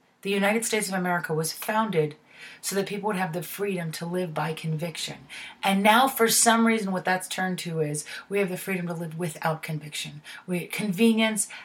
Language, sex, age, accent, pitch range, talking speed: English, female, 30-49, American, 165-215 Hz, 195 wpm